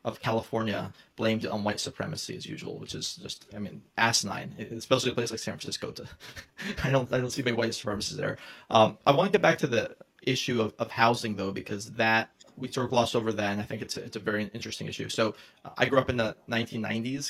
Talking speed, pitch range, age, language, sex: 235 wpm, 110-140 Hz, 20-39, English, male